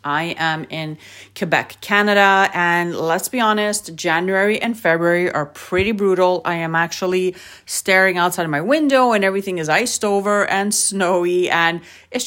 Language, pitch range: English, 170-225 Hz